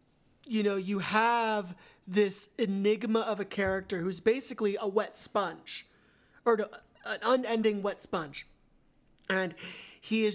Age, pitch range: 30-49, 195-225 Hz